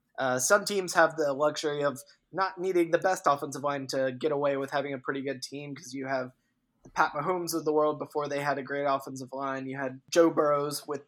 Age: 20-39